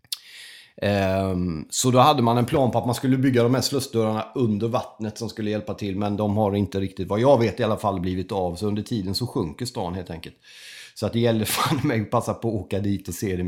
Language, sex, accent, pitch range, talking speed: Swedish, male, native, 95-120 Hz, 245 wpm